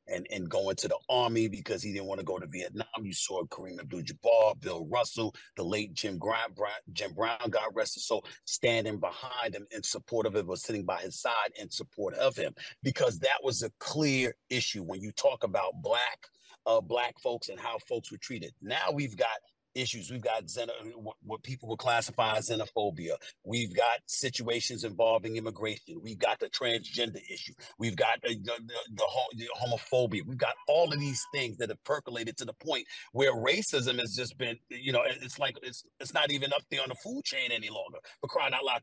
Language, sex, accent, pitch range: English, male, American, 115-155 Hz